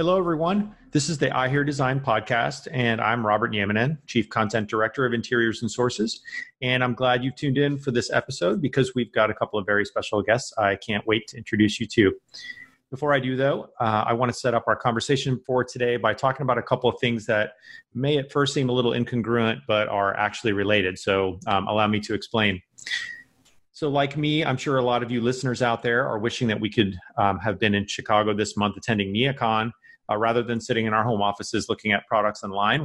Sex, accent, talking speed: male, American, 225 wpm